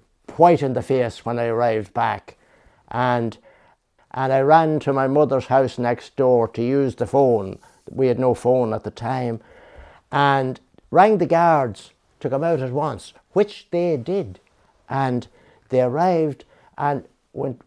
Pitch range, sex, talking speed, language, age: 130-170 Hz, male, 155 wpm, English, 60-79